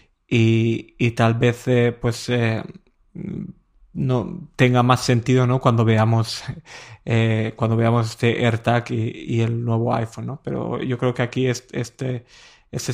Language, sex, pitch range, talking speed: Spanish, male, 120-130 Hz, 155 wpm